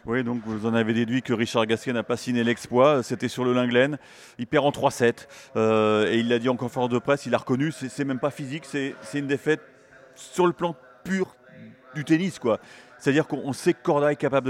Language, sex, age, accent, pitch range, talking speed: French, male, 30-49, French, 125-155 Hz, 230 wpm